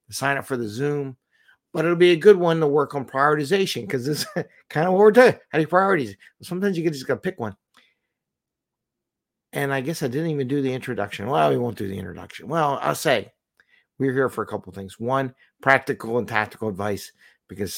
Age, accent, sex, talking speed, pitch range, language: 50-69, American, male, 220 wpm, 115-145 Hz, English